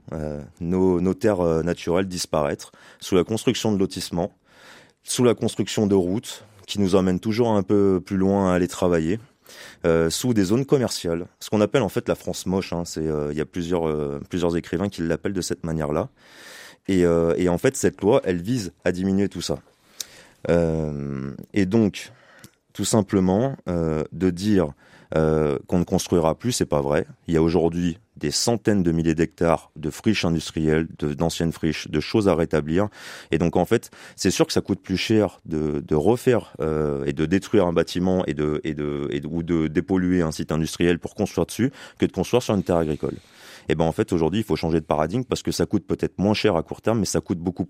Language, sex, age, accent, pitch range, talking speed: French, male, 30-49, French, 80-100 Hz, 215 wpm